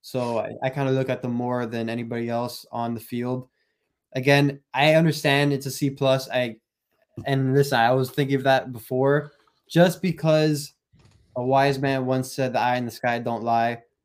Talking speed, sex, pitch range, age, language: 190 wpm, male, 120-140 Hz, 20-39, English